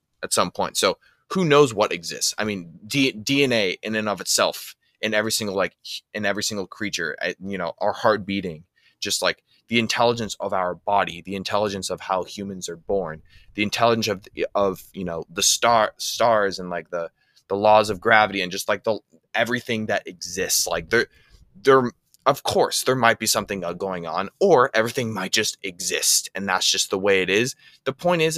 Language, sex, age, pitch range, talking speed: English, male, 20-39, 100-125 Hz, 190 wpm